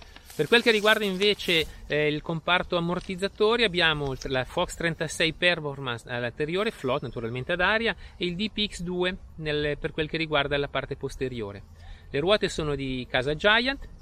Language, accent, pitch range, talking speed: Italian, native, 130-180 Hz, 155 wpm